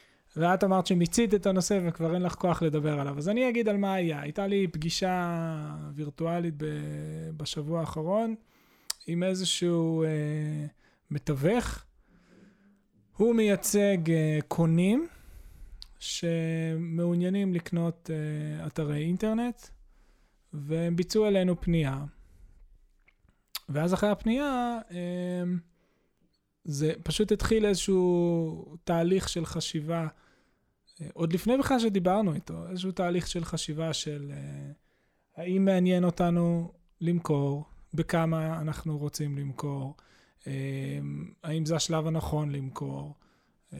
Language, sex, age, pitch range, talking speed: Hebrew, male, 20-39, 155-185 Hz, 100 wpm